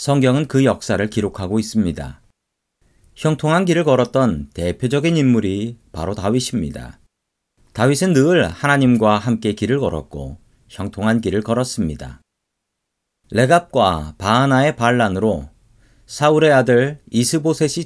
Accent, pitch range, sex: native, 105-140 Hz, male